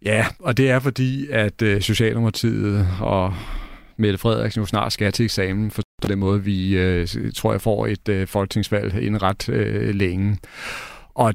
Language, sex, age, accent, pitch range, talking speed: Danish, male, 40-59, native, 95-115 Hz, 150 wpm